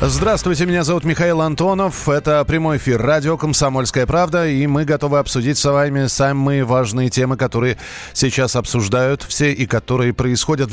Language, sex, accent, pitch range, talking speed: Russian, male, native, 120-155 Hz, 150 wpm